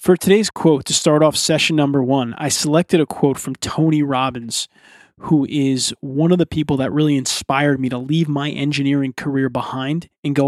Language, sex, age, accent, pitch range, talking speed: English, male, 20-39, American, 140-165 Hz, 195 wpm